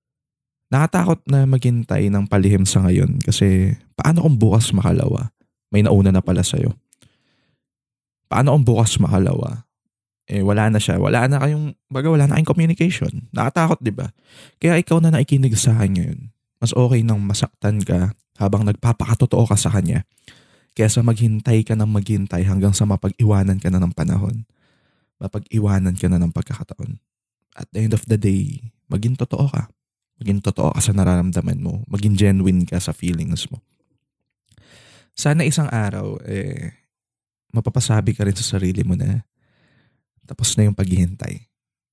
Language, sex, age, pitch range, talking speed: English, male, 20-39, 95-130 Hz, 145 wpm